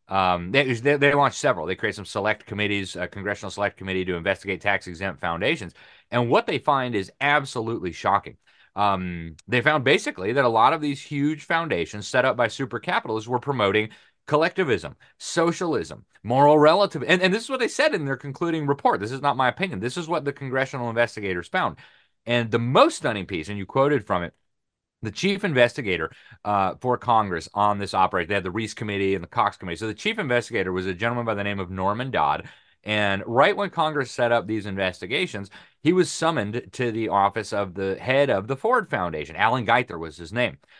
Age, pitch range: 30-49, 95-140 Hz